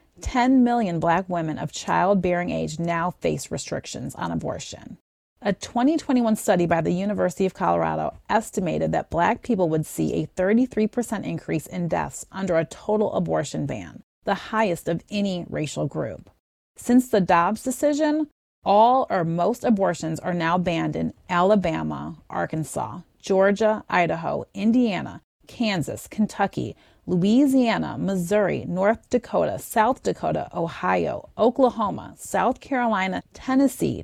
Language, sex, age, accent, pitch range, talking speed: English, female, 30-49, American, 170-225 Hz, 125 wpm